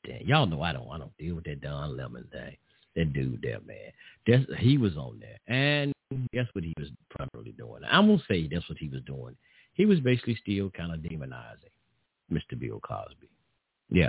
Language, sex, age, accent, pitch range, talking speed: English, male, 50-69, American, 80-125 Hz, 215 wpm